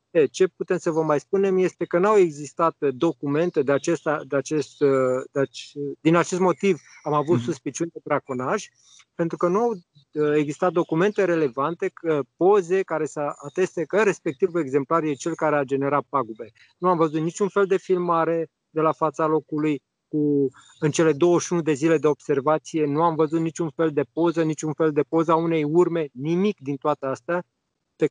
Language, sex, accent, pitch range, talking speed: Romanian, male, native, 145-170 Hz, 180 wpm